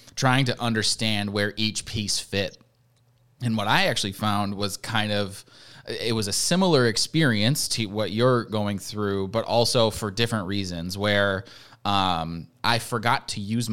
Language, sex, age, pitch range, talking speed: English, male, 20-39, 100-120 Hz, 155 wpm